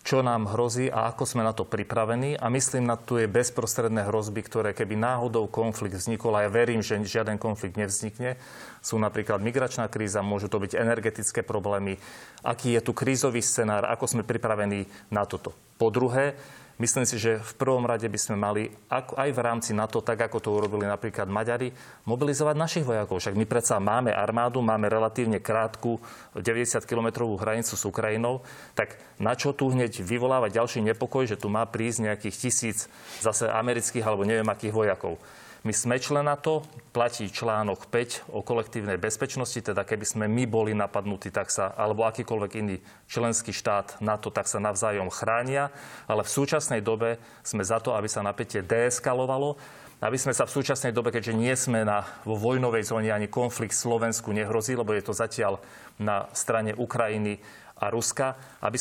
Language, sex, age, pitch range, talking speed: Slovak, male, 30-49, 105-120 Hz, 170 wpm